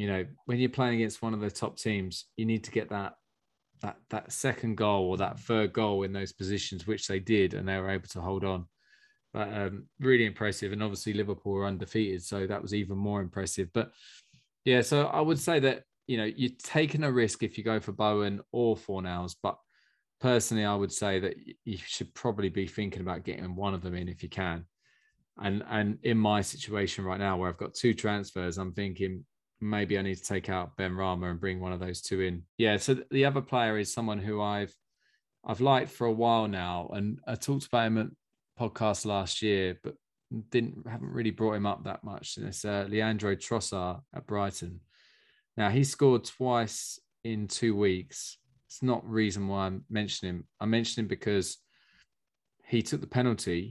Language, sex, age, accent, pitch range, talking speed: English, male, 20-39, British, 95-115 Hz, 205 wpm